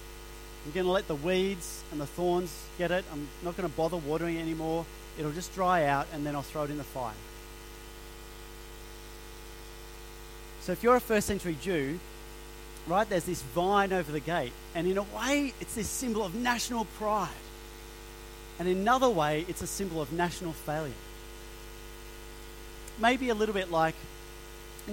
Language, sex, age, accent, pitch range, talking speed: English, male, 40-59, Australian, 115-180 Hz, 170 wpm